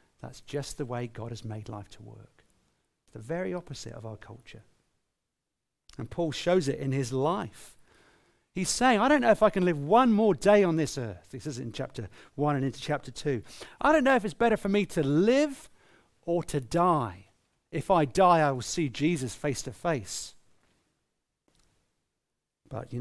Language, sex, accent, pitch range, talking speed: English, male, British, 115-175 Hz, 190 wpm